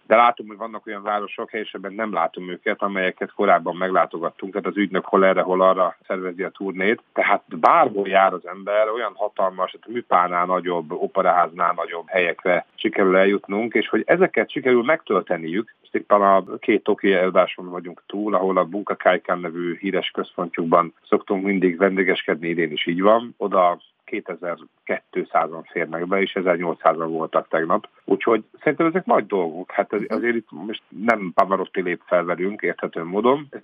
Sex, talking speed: male, 155 wpm